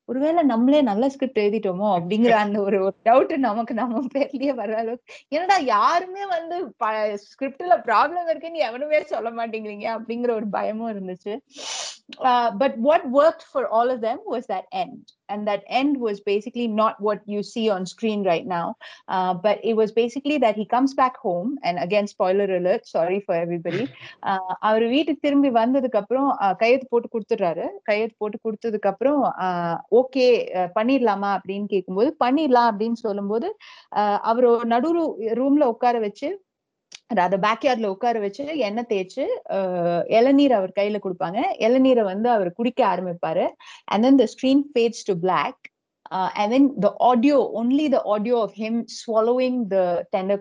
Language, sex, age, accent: Tamil, female, 30-49, native